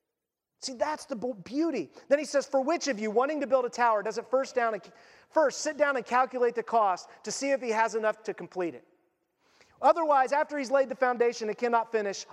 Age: 30-49